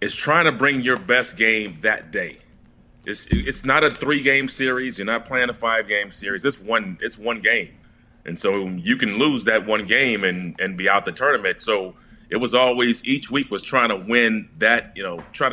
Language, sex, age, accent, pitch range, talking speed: English, male, 30-49, American, 110-135 Hz, 215 wpm